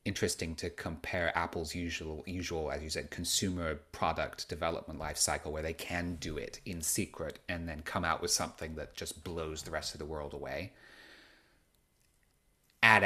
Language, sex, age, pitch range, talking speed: English, male, 30-49, 80-95 Hz, 165 wpm